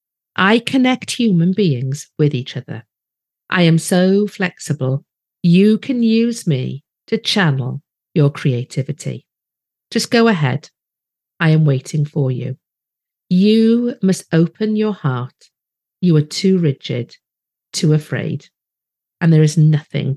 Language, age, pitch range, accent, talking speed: English, 50-69, 140-190 Hz, British, 125 wpm